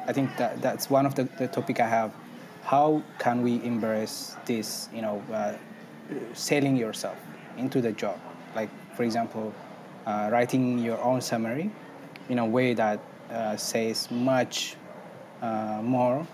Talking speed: 150 wpm